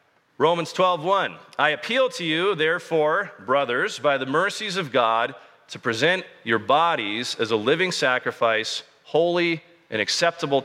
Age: 40-59